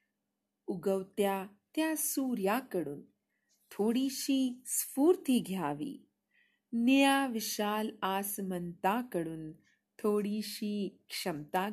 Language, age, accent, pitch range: Hindi, 40-59, native, 185-250 Hz